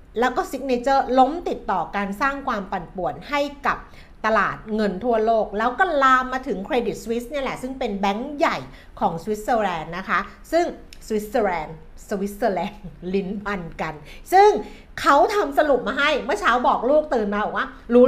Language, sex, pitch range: Thai, female, 205-260 Hz